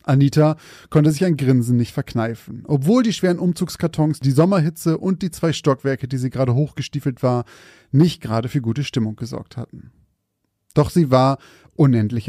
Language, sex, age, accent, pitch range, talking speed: German, male, 30-49, German, 125-165 Hz, 160 wpm